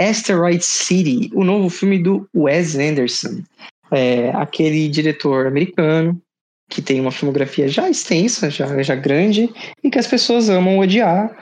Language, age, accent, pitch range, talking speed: Portuguese, 20-39, Brazilian, 145-190 Hz, 140 wpm